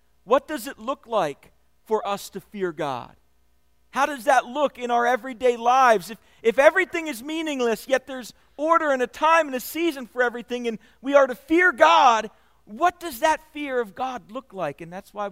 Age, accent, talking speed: 40-59, American, 200 wpm